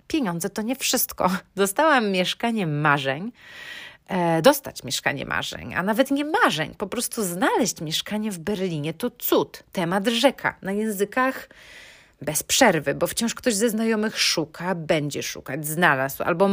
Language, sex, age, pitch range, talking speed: Polish, female, 30-49, 160-225 Hz, 140 wpm